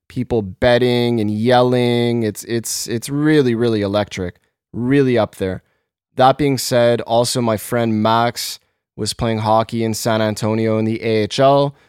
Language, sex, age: English, male, 20-39